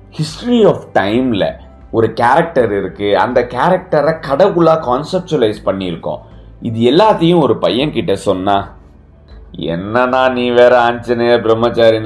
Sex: male